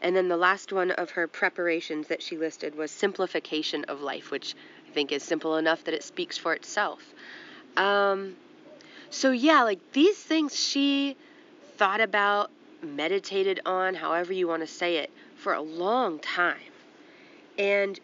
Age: 20-39